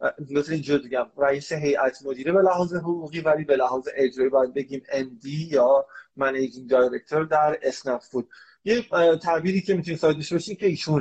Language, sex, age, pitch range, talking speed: Persian, male, 30-49, 140-185 Hz, 175 wpm